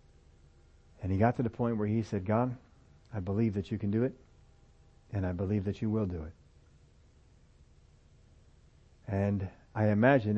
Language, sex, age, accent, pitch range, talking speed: English, male, 60-79, American, 80-115 Hz, 160 wpm